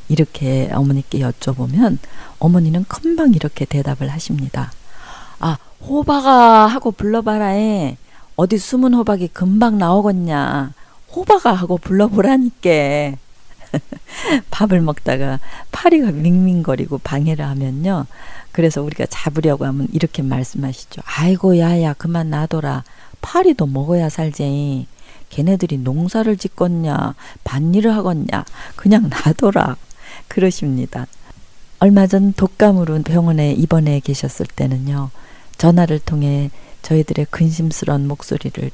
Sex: female